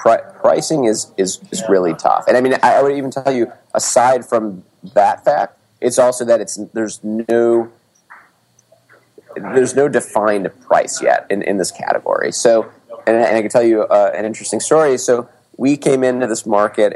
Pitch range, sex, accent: 105-120 Hz, male, American